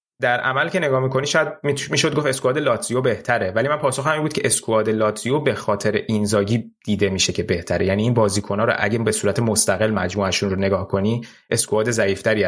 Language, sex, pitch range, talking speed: Persian, male, 100-130 Hz, 190 wpm